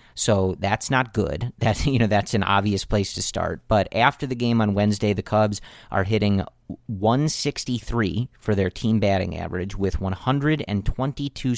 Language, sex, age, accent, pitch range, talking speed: English, male, 40-59, American, 100-120 Hz, 160 wpm